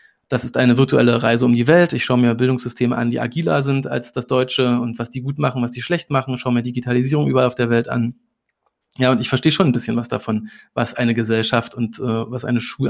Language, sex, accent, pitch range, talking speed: German, male, German, 120-140 Hz, 250 wpm